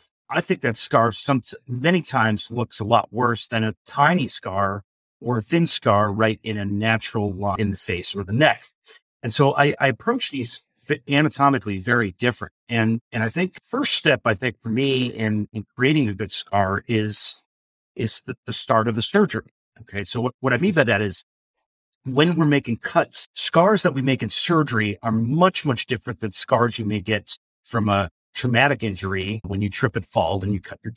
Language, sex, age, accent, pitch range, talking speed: English, male, 50-69, American, 105-140 Hz, 205 wpm